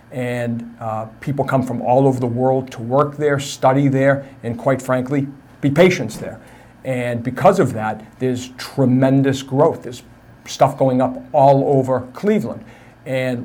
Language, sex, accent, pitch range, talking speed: English, male, American, 120-135 Hz, 155 wpm